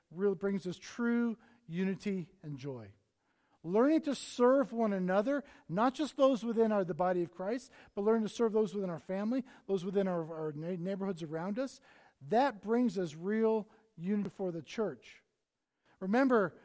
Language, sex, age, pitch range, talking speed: English, male, 40-59, 185-235 Hz, 160 wpm